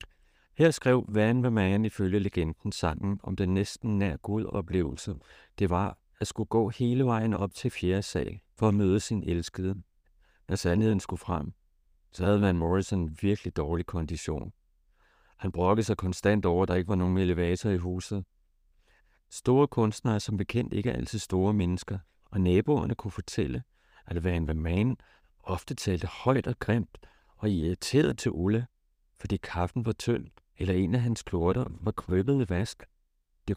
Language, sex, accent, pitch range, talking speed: Danish, male, native, 85-105 Hz, 165 wpm